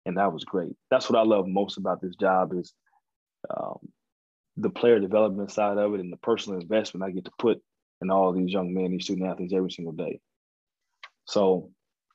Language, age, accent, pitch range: English, 20-39, American, 95-105 Hz